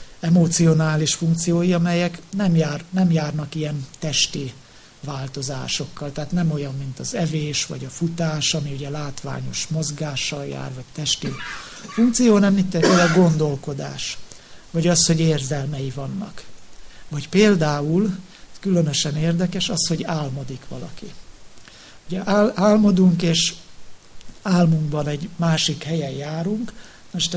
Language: English